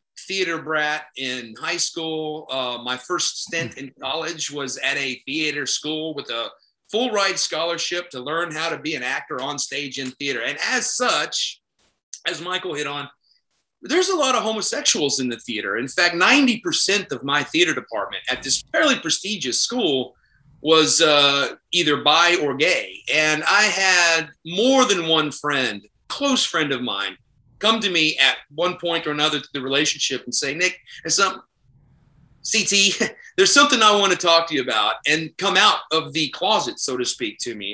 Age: 30-49